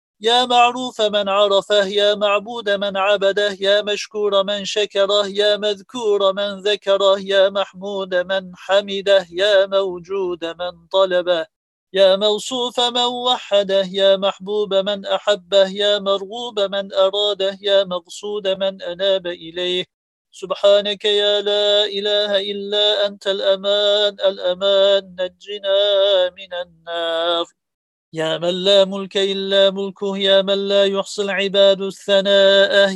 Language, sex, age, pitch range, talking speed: Turkish, male, 40-59, 195-205 Hz, 115 wpm